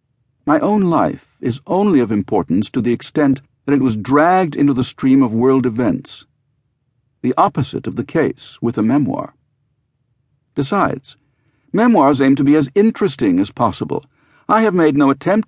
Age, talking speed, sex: 60-79, 160 wpm, male